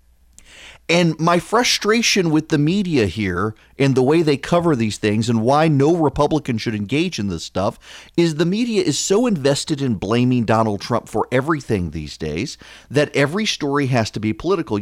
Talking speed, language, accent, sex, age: 180 wpm, English, American, male, 40-59